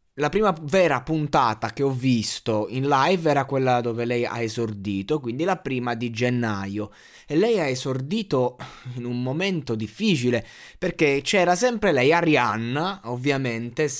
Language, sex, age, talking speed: Italian, male, 20-39, 145 wpm